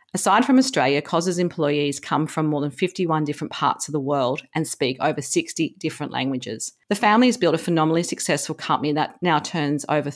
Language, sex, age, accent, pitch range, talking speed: English, female, 50-69, Australian, 145-170 Hz, 195 wpm